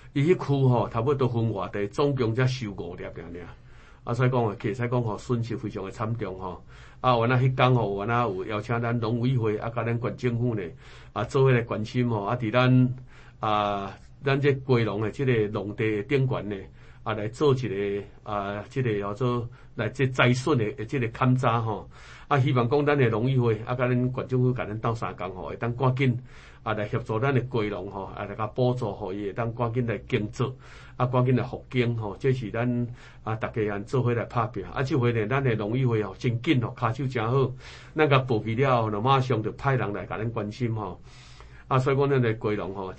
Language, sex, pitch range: Chinese, male, 105-125 Hz